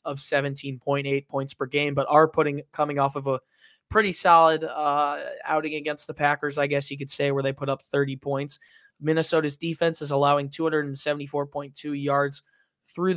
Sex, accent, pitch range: male, American, 140-160 Hz